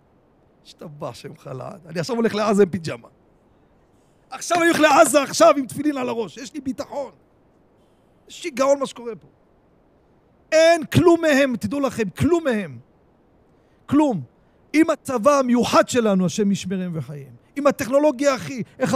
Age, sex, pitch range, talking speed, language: 40-59, male, 170-260 Hz, 140 wpm, Hebrew